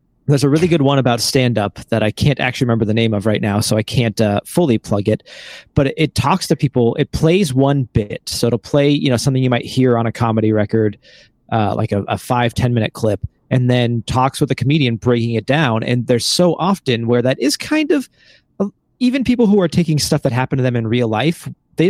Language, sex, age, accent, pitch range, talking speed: English, male, 30-49, American, 115-150 Hz, 225 wpm